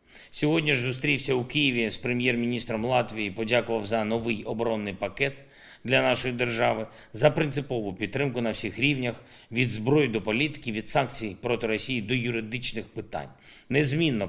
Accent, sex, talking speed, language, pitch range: native, male, 145 wpm, Ukrainian, 105-130 Hz